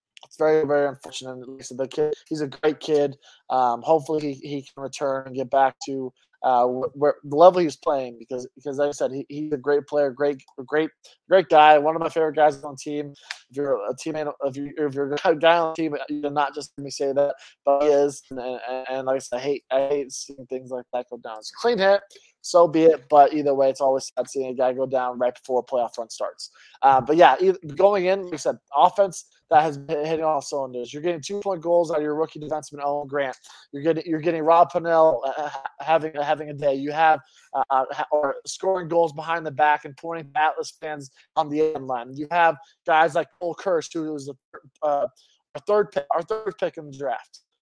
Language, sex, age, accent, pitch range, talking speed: English, male, 20-39, American, 135-160 Hz, 240 wpm